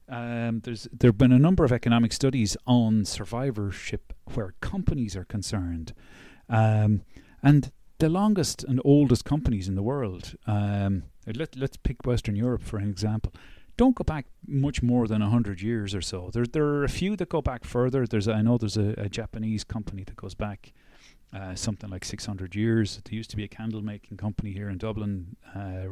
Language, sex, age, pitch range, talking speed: English, male, 30-49, 100-120 Hz, 190 wpm